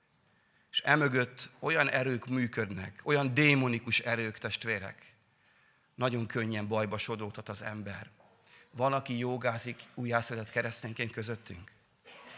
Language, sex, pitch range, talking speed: Hungarian, male, 110-150 Hz, 100 wpm